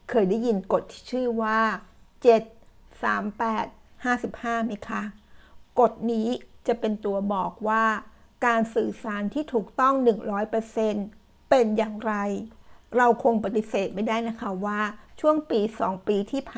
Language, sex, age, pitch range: Thai, female, 60-79, 205-235 Hz